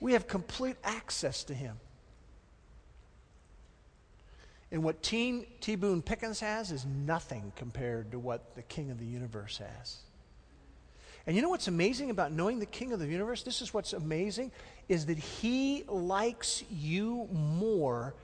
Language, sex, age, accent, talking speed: English, male, 50-69, American, 150 wpm